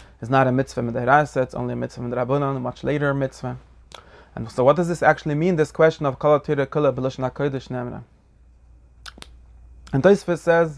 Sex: male